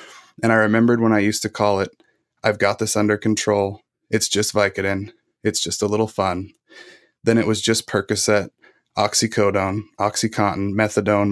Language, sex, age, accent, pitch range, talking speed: English, male, 20-39, American, 100-110 Hz, 160 wpm